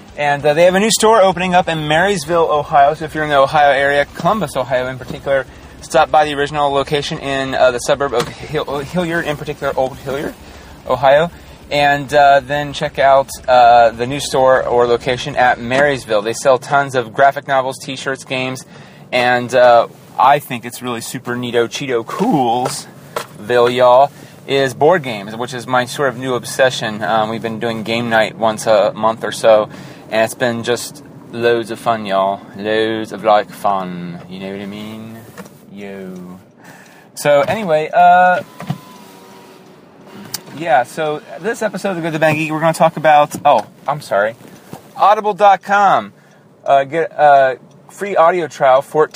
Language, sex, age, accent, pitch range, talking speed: English, male, 30-49, American, 120-155 Hz, 170 wpm